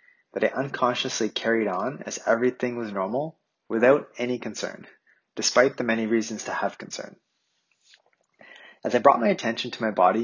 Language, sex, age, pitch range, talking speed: English, male, 30-49, 105-125 Hz, 160 wpm